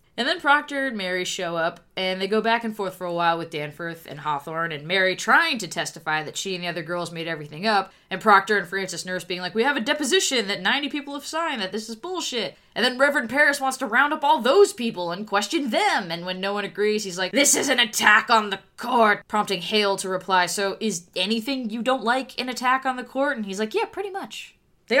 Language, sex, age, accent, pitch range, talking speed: English, female, 20-39, American, 185-275 Hz, 250 wpm